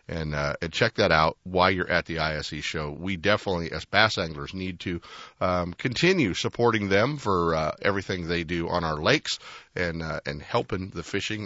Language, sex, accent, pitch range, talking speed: English, male, American, 85-110 Hz, 195 wpm